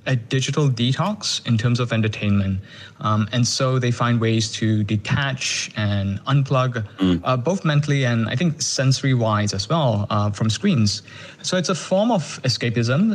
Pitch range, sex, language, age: 110-135 Hz, male, English, 20-39